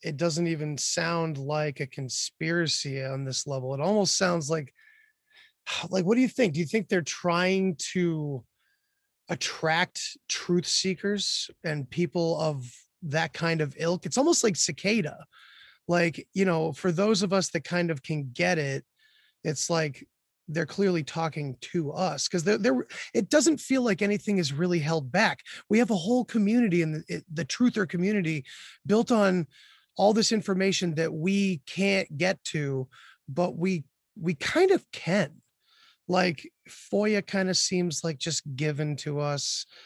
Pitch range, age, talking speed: 155-195 Hz, 20-39, 160 wpm